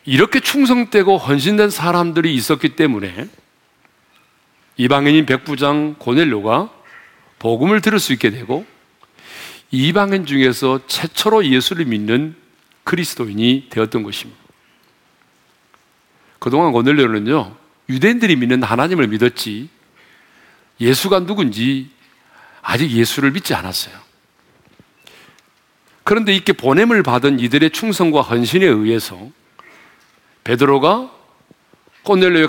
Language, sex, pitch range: Korean, male, 115-180 Hz